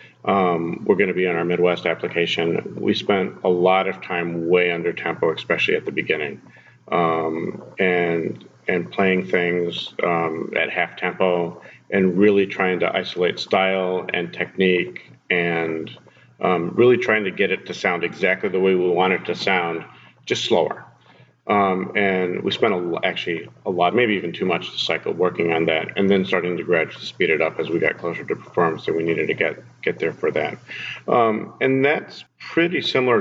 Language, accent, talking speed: English, American, 185 wpm